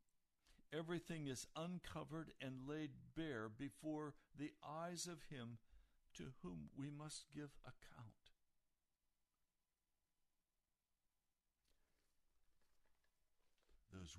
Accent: American